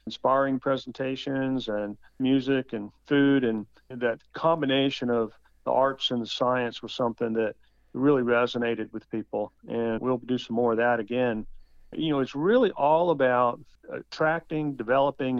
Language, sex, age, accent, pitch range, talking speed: English, male, 50-69, American, 115-130 Hz, 150 wpm